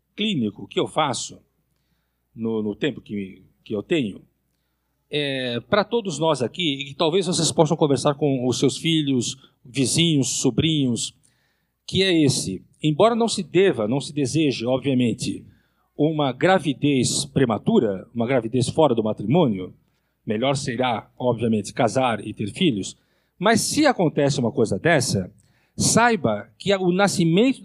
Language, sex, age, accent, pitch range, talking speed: Portuguese, male, 50-69, Brazilian, 130-185 Hz, 135 wpm